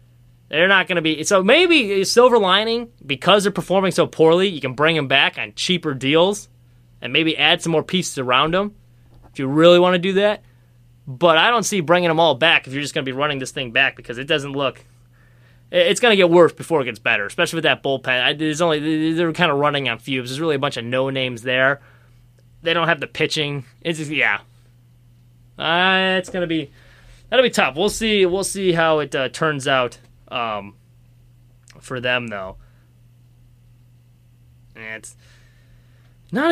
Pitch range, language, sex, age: 120-180 Hz, English, male, 20-39